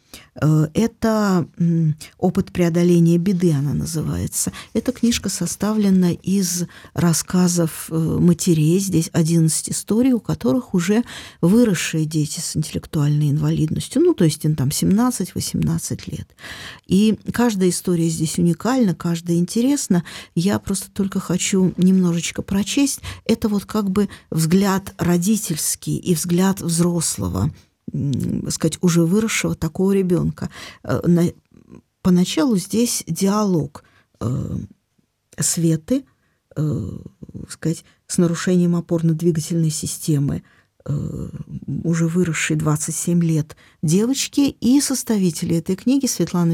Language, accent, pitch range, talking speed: Russian, native, 160-200 Hz, 100 wpm